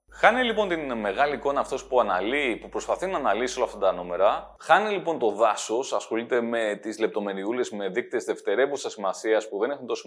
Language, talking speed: Greek, 190 wpm